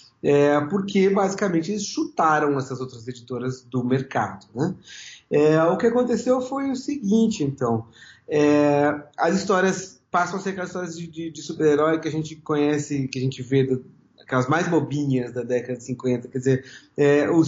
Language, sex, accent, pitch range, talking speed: Portuguese, male, Brazilian, 125-160 Hz, 150 wpm